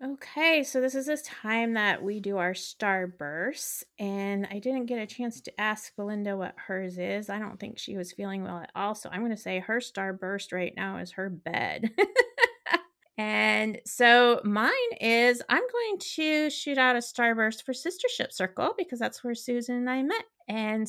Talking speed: 190 wpm